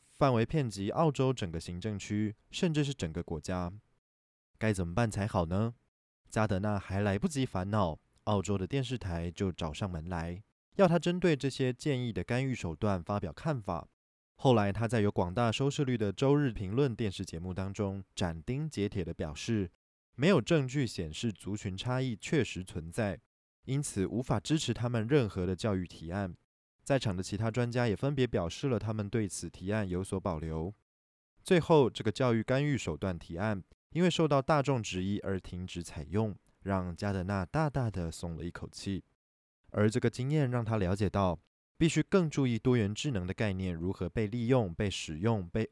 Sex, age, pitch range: male, 20-39, 90-130 Hz